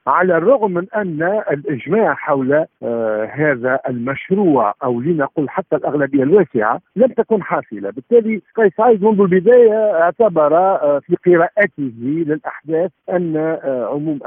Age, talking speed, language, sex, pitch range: 50-69, 125 wpm, Arabic, male, 130-195 Hz